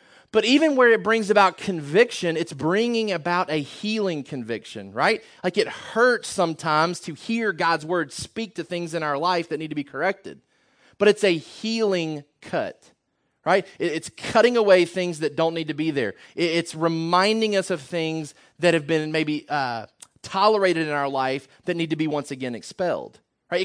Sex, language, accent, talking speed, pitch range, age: male, English, American, 180 wpm, 150-190 Hz, 30-49